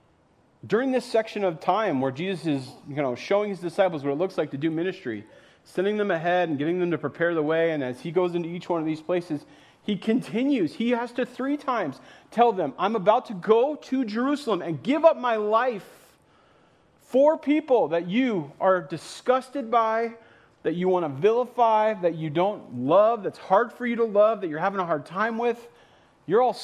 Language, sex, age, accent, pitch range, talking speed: English, male, 40-59, American, 150-220 Hz, 205 wpm